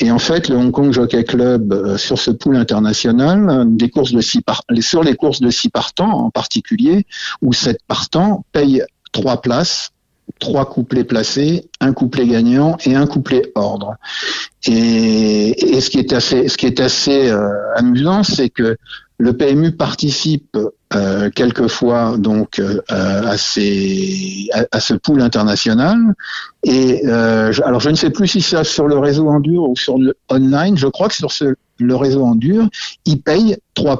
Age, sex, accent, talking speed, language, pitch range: 60-79, male, French, 175 wpm, French, 115-155 Hz